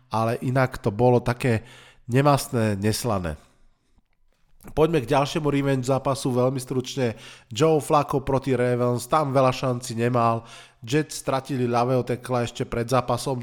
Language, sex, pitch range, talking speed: Slovak, male, 115-135 Hz, 130 wpm